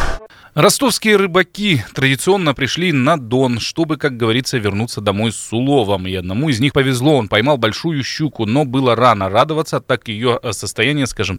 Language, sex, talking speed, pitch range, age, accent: Russian, male, 160 wpm, 105-140 Hz, 20-39, native